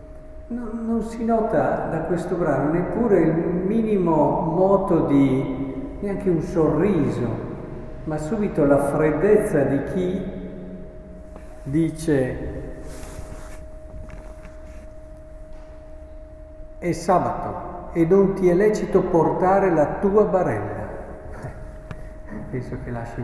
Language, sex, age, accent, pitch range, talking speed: Italian, male, 50-69, native, 125-165 Hz, 90 wpm